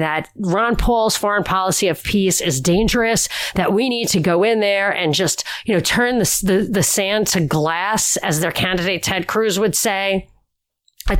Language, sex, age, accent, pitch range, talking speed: English, female, 40-59, American, 190-235 Hz, 190 wpm